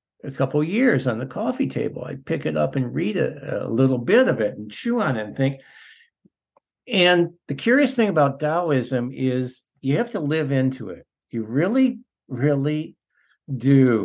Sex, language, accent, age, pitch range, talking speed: male, English, American, 60-79, 120-160 Hz, 175 wpm